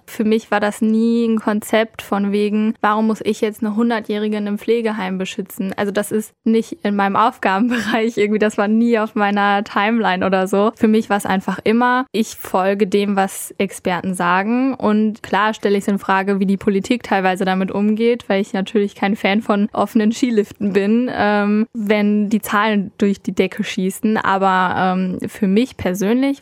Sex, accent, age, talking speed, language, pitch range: female, German, 10-29, 185 wpm, German, 190-220 Hz